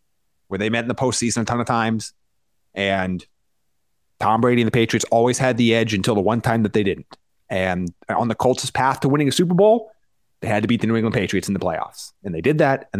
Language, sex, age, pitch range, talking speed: English, male, 30-49, 115-155 Hz, 245 wpm